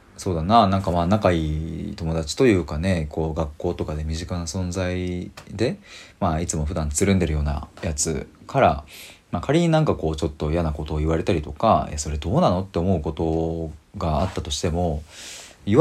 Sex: male